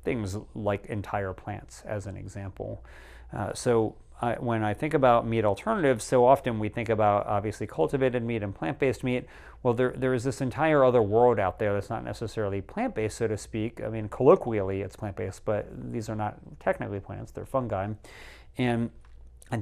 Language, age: English, 40-59